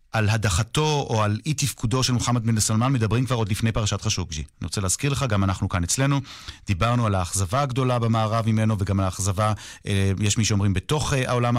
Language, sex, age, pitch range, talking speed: Hebrew, male, 40-59, 100-130 Hz, 195 wpm